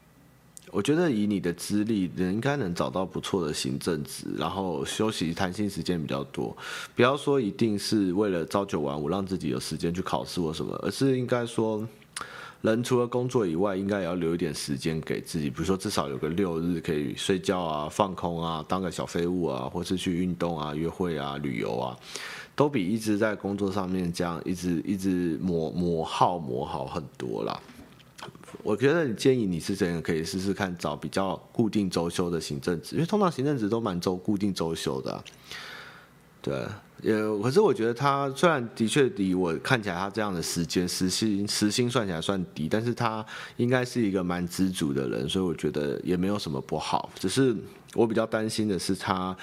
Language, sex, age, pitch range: Chinese, male, 30-49, 85-110 Hz